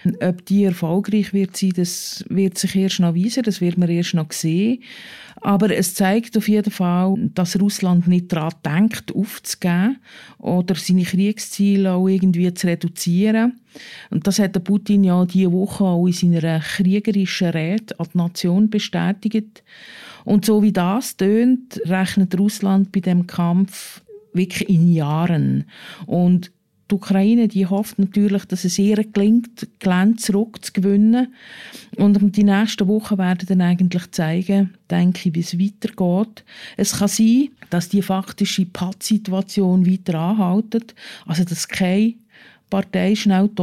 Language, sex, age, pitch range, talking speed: German, female, 50-69, 180-210 Hz, 145 wpm